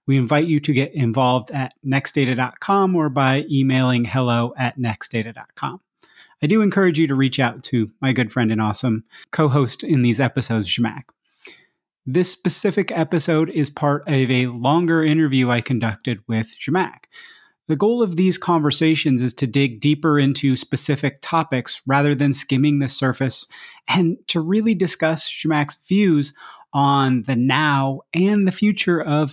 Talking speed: 155 wpm